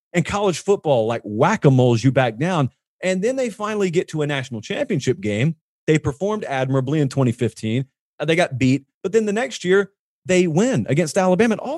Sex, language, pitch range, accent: male, English, 125-190 Hz, American